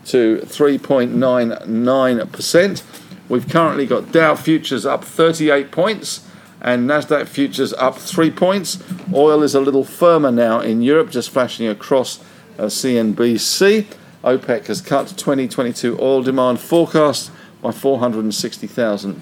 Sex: male